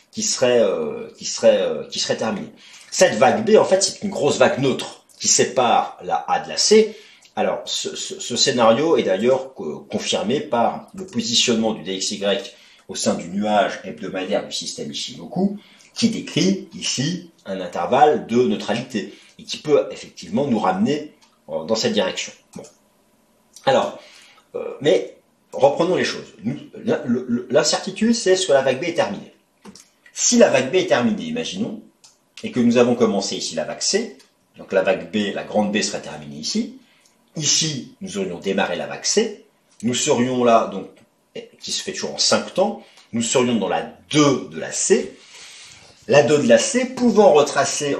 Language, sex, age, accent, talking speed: French, male, 40-59, French, 175 wpm